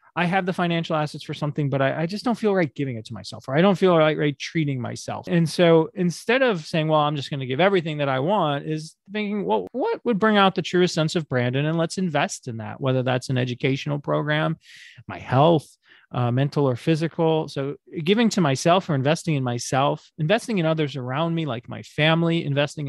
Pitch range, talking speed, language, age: 135-170 Hz, 225 wpm, English, 30-49